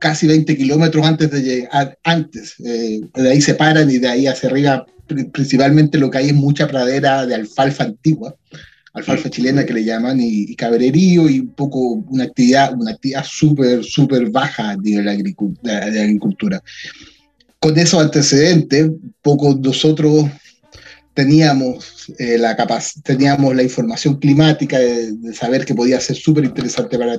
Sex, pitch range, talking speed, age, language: male, 120-150 Hz, 155 wpm, 30-49, Spanish